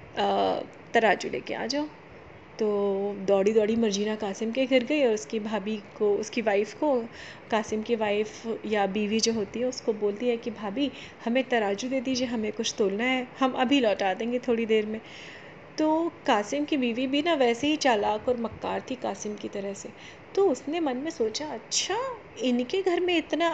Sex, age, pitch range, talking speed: female, 30-49, 220-270 Hz, 185 wpm